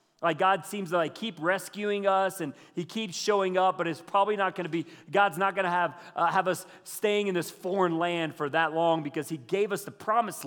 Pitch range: 155-195 Hz